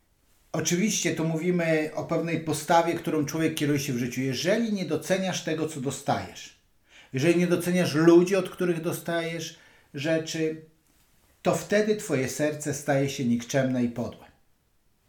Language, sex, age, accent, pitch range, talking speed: Polish, male, 50-69, native, 130-170 Hz, 140 wpm